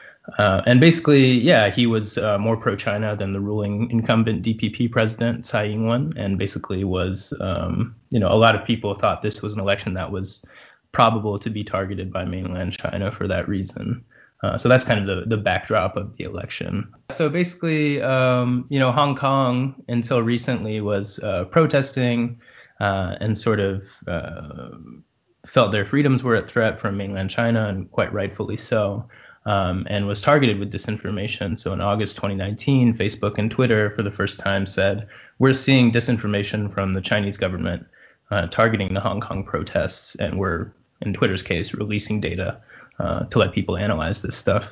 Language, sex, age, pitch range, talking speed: English, male, 20-39, 100-120 Hz, 175 wpm